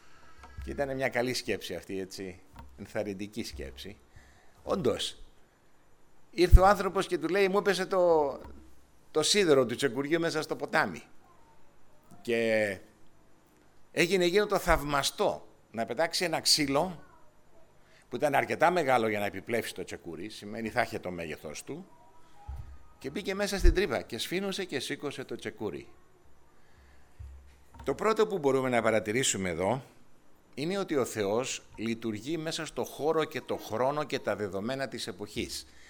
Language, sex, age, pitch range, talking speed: Greek, male, 50-69, 110-160 Hz, 135 wpm